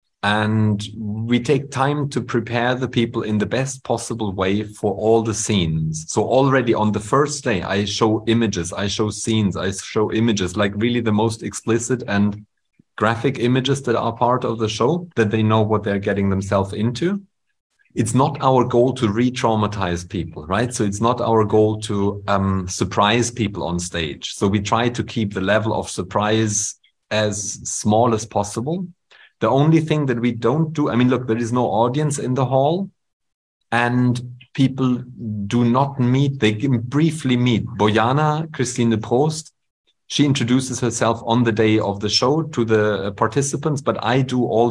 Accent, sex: German, male